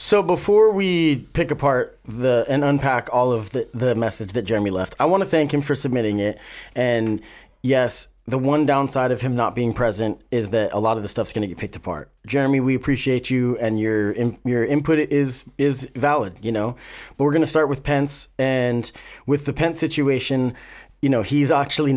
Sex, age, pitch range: male, 30-49, 115-145 Hz